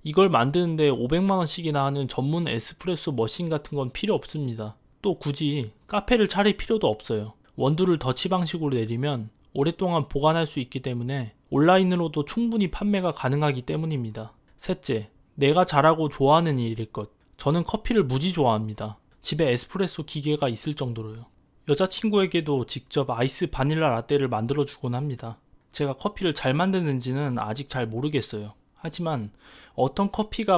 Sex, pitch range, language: male, 120-165 Hz, Korean